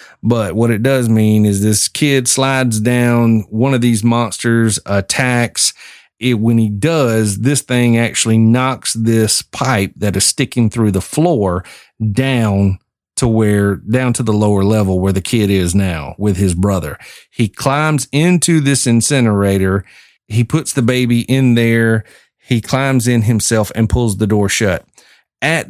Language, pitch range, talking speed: English, 105-130 Hz, 160 wpm